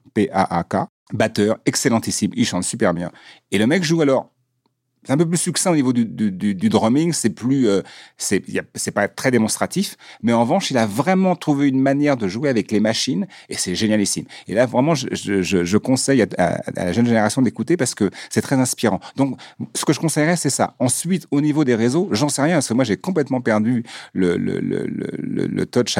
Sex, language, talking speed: male, French, 225 wpm